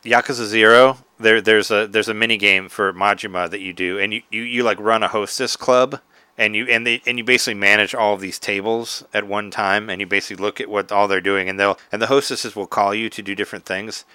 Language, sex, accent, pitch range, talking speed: English, male, American, 100-120 Hz, 250 wpm